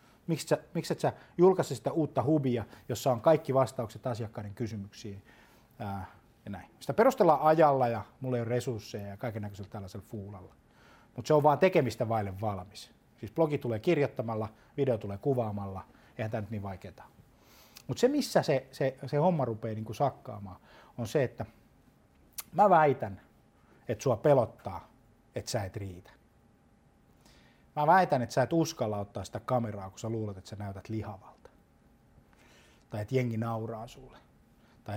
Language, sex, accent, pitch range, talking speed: Finnish, male, native, 105-135 Hz, 160 wpm